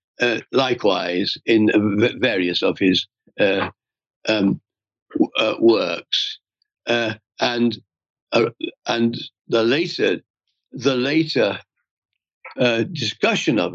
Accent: British